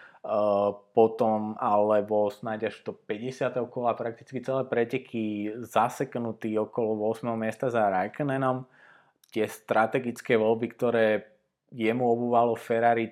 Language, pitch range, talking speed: Slovak, 105-120 Hz, 105 wpm